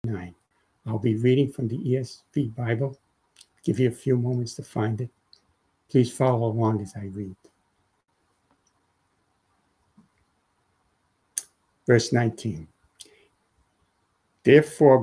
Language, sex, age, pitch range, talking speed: English, male, 60-79, 110-140 Hz, 95 wpm